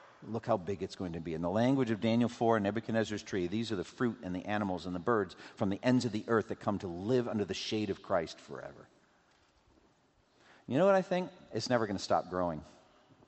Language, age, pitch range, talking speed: English, 50-69, 95-130 Hz, 240 wpm